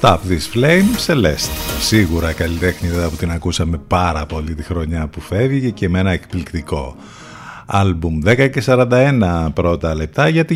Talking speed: 140 wpm